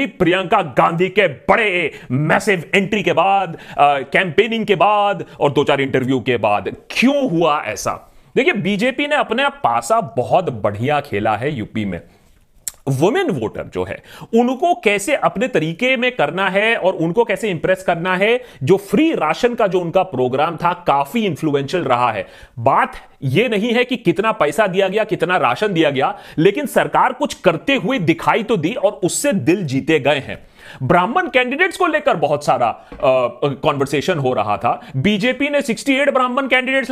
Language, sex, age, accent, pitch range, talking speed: Hindi, male, 30-49, native, 160-255 Hz, 165 wpm